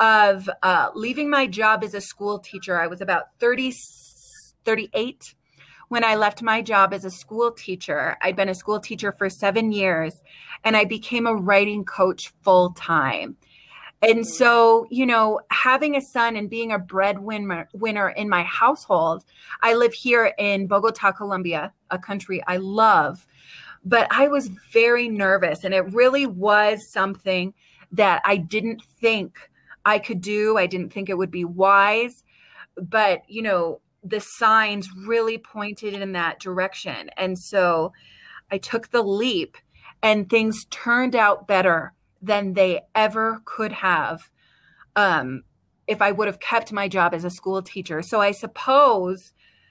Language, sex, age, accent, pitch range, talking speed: English, female, 30-49, American, 190-230 Hz, 155 wpm